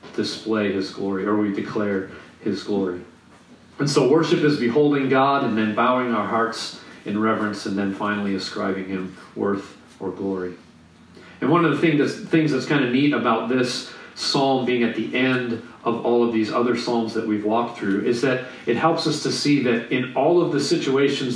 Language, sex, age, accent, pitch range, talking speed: English, male, 40-59, American, 115-150 Hz, 195 wpm